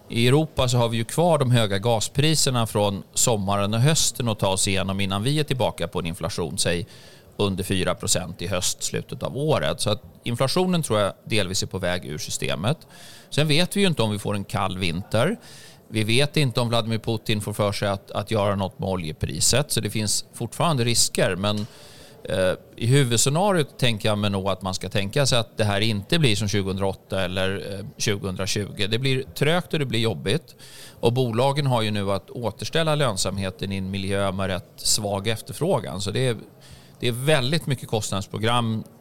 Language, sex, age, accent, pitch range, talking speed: Swedish, male, 30-49, native, 100-130 Hz, 195 wpm